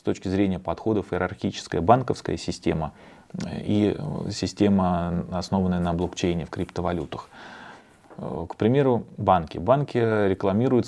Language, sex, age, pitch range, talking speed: English, male, 30-49, 90-115 Hz, 105 wpm